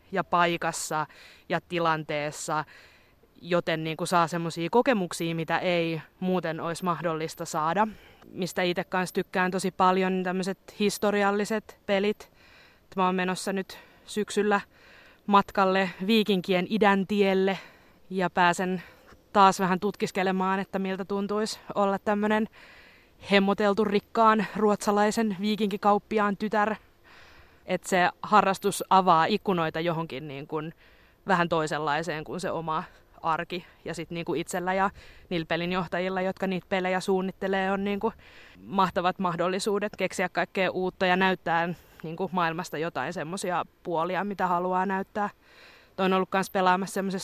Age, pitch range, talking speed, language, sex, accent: 20-39, 175-200 Hz, 125 wpm, Finnish, female, native